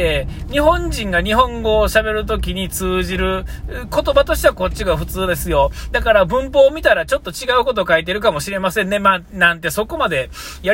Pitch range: 135-225 Hz